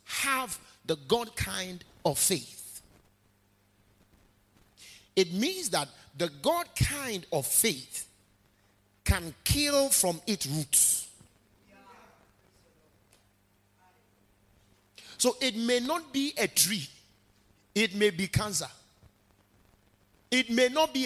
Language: English